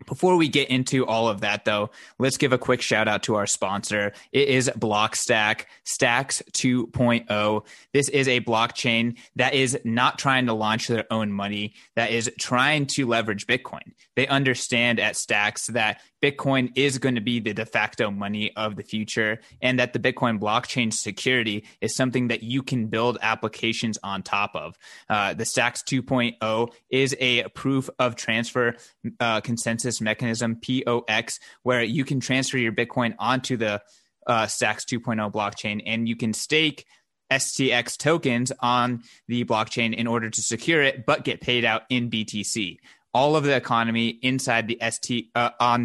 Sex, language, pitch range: male, English, 110-130 Hz